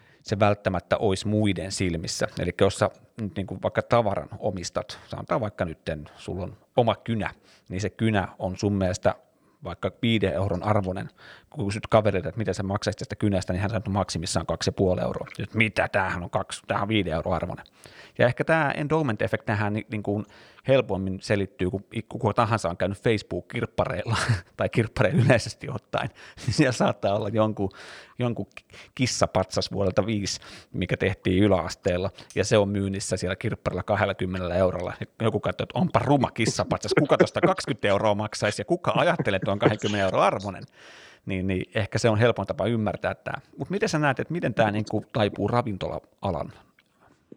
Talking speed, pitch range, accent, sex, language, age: 165 wpm, 95-110 Hz, native, male, Finnish, 30-49